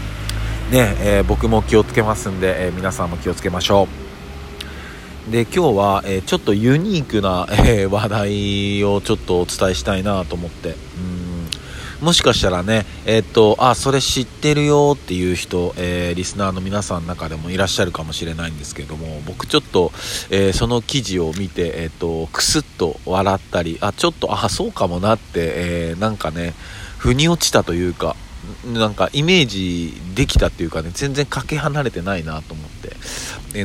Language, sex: Japanese, male